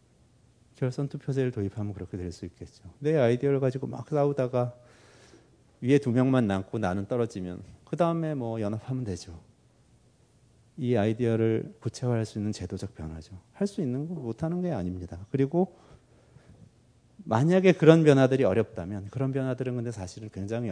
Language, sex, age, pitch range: Korean, male, 40-59, 100-125 Hz